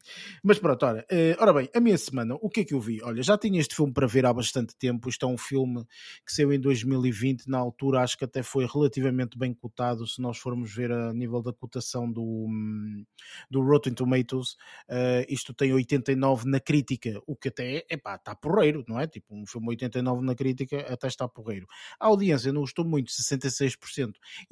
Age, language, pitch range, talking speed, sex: 20-39, Portuguese, 125-150 Hz, 200 wpm, male